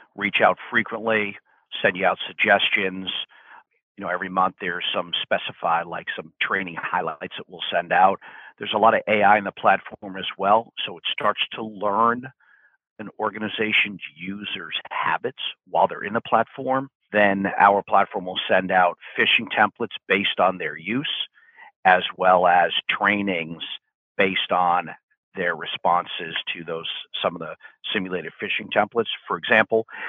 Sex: male